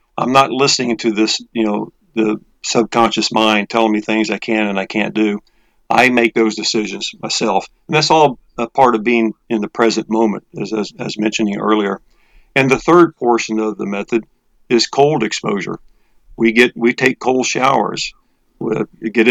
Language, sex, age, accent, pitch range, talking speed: English, male, 50-69, American, 110-130 Hz, 180 wpm